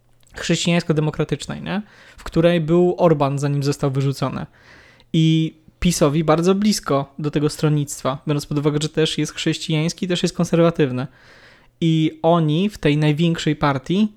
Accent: native